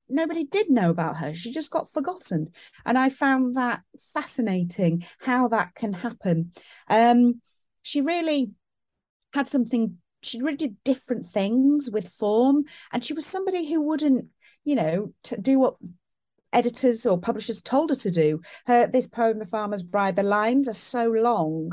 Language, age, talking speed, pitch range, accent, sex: English, 40-59, 160 wpm, 185-250 Hz, British, female